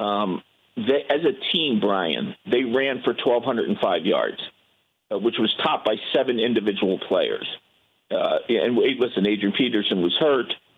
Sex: male